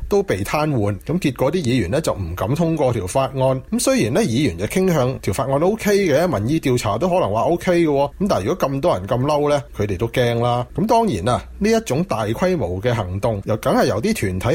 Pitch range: 110-165 Hz